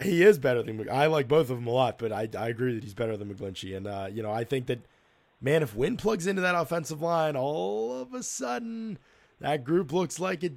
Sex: male